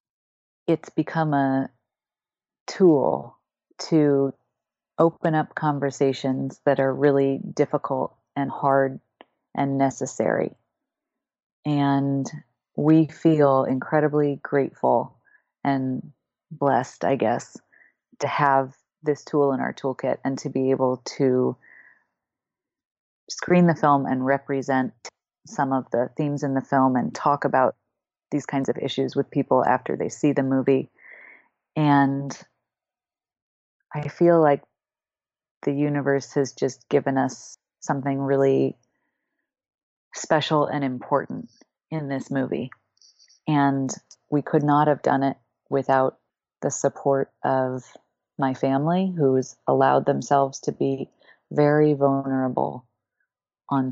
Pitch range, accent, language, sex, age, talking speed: 135-150 Hz, American, English, female, 30-49, 115 wpm